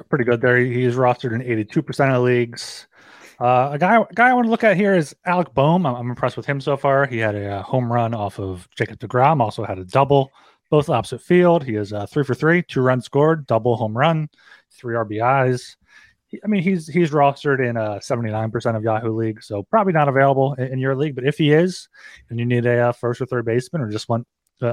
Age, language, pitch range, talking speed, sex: 30-49, English, 115-160 Hz, 235 wpm, male